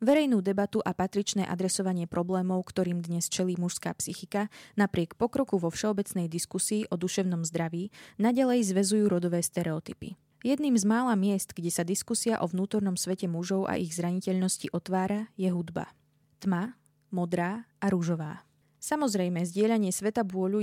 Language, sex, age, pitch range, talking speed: Slovak, female, 20-39, 175-210 Hz, 140 wpm